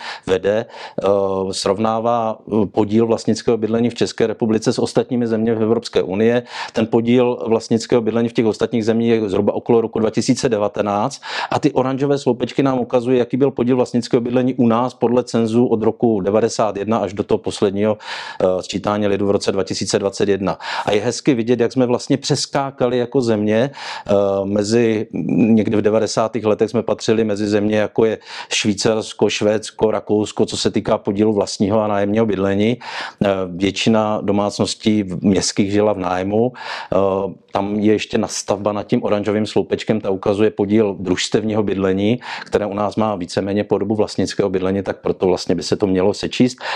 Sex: male